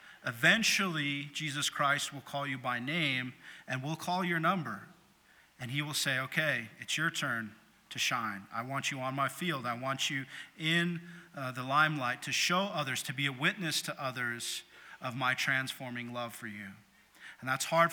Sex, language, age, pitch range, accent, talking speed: male, English, 40-59, 125-150 Hz, American, 180 wpm